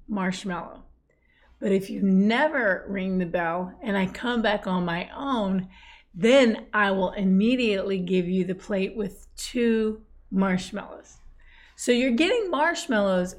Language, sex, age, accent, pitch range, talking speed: English, female, 30-49, American, 195-240 Hz, 135 wpm